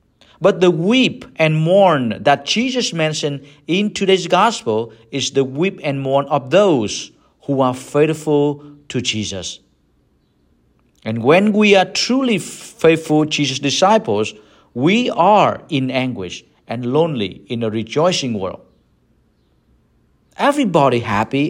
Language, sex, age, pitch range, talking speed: English, male, 50-69, 125-185 Hz, 120 wpm